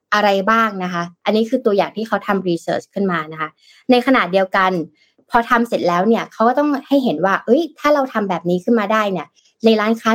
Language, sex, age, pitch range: Thai, female, 20-39, 185-235 Hz